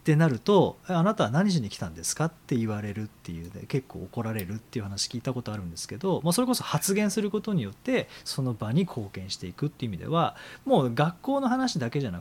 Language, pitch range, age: Japanese, 110-185 Hz, 40-59